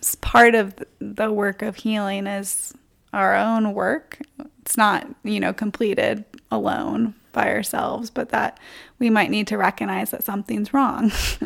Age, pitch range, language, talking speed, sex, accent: 20-39, 195-245 Hz, English, 145 wpm, female, American